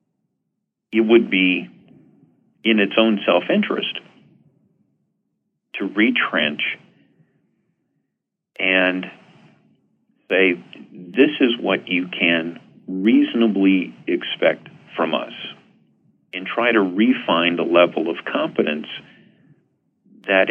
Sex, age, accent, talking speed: male, 40-59, American, 85 wpm